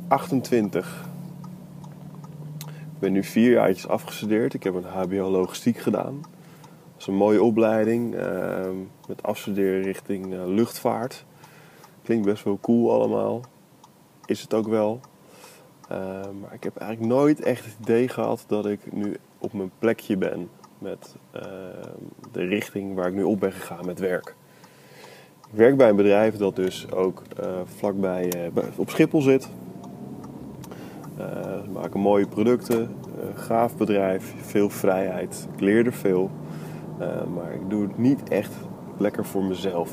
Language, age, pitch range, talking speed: Dutch, 20-39, 95-120 Hz, 150 wpm